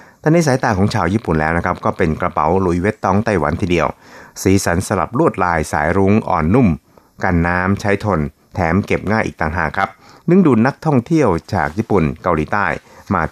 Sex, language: male, Thai